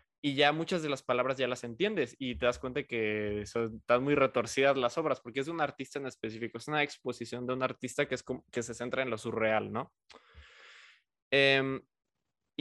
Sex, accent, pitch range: male, Mexican, 115-145 Hz